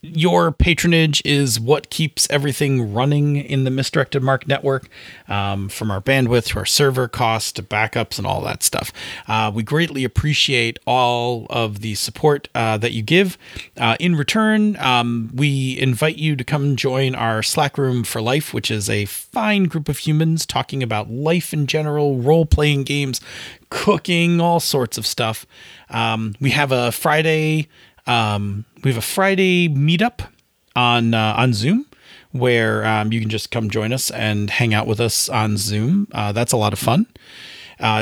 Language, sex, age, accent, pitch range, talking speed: English, male, 30-49, American, 110-150 Hz, 170 wpm